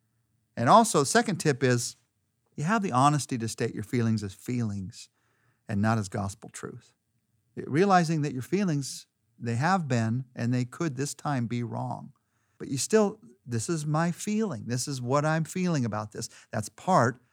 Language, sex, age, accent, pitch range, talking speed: English, male, 50-69, American, 115-150 Hz, 175 wpm